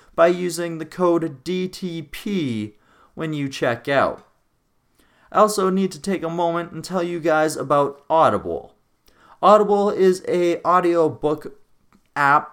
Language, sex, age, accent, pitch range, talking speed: English, male, 30-49, American, 135-180 Hz, 130 wpm